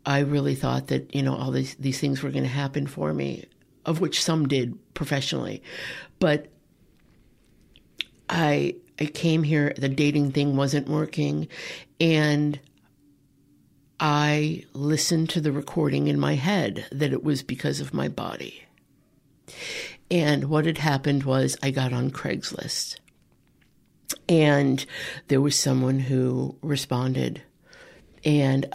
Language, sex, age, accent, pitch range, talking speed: English, female, 60-79, American, 130-150 Hz, 130 wpm